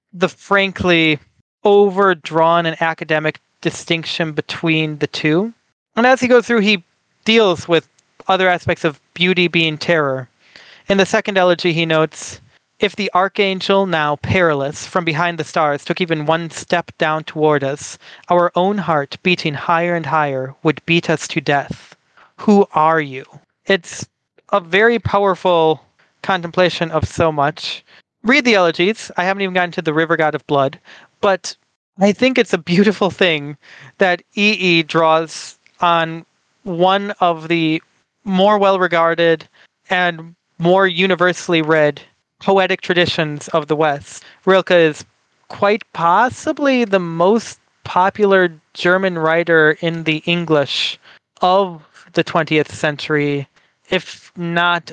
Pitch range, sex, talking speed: 155-190 Hz, male, 135 wpm